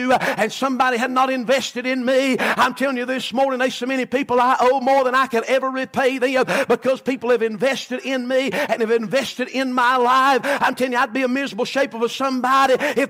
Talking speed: 225 wpm